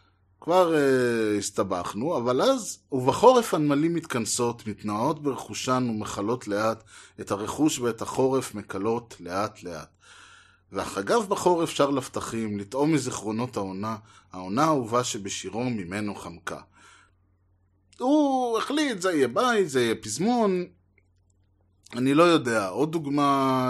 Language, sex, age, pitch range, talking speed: Hebrew, male, 20-39, 105-145 Hz, 110 wpm